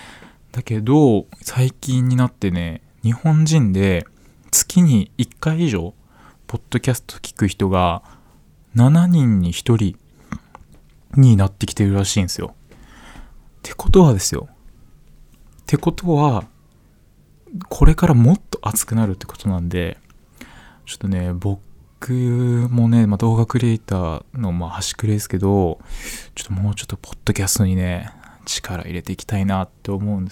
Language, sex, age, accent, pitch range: Japanese, male, 20-39, native, 95-125 Hz